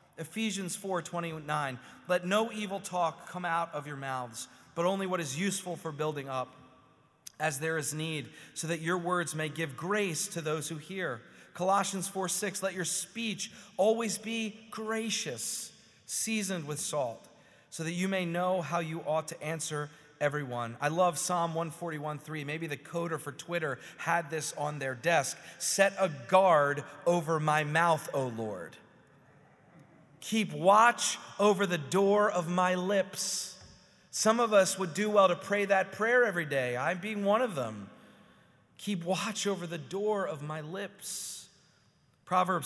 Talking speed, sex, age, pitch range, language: 160 wpm, male, 30-49, 145-190 Hz, English